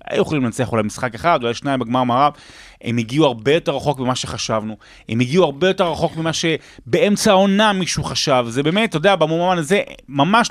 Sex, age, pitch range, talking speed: male, 30-49, 115-170 Hz, 195 wpm